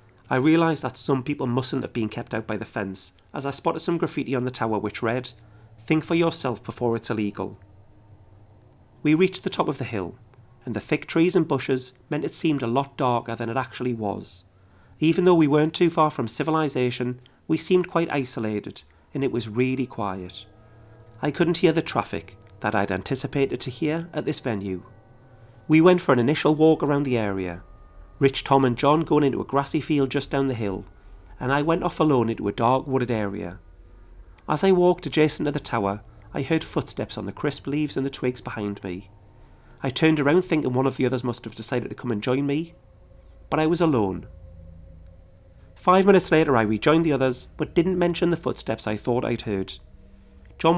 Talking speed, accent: 200 wpm, British